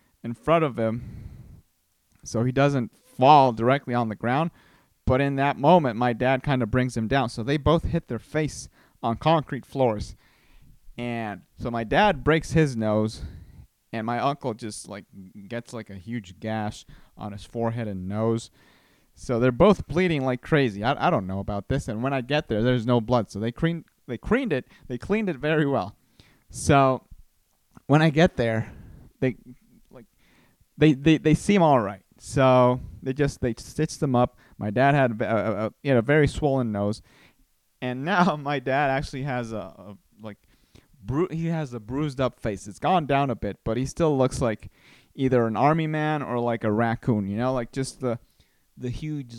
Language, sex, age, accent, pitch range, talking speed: English, male, 30-49, American, 110-145 Hz, 185 wpm